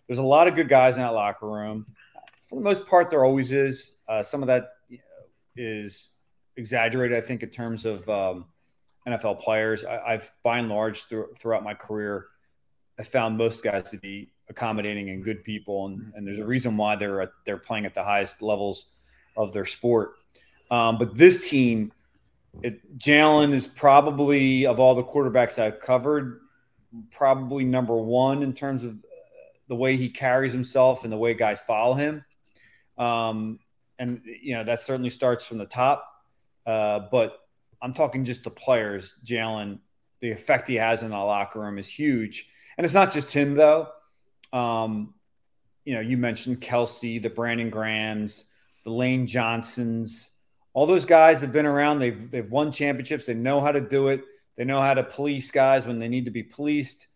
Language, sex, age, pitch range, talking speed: English, male, 30-49, 110-135 Hz, 180 wpm